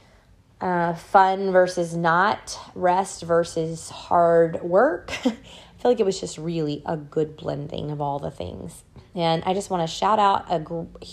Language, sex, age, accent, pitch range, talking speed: English, female, 30-49, American, 150-175 Hz, 165 wpm